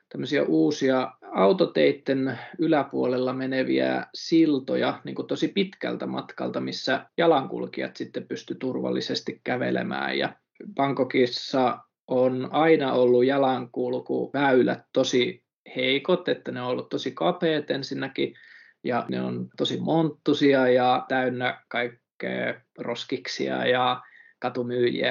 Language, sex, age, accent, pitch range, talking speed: Finnish, male, 20-39, native, 100-145 Hz, 95 wpm